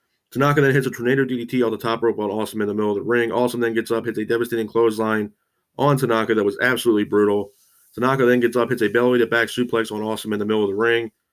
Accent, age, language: American, 30-49, English